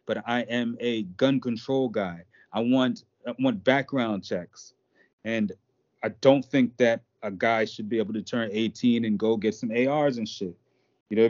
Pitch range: 115-135 Hz